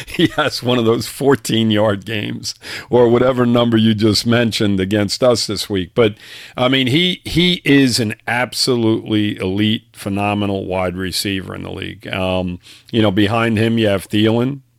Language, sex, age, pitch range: English, male, 50-69, 100-120 Hz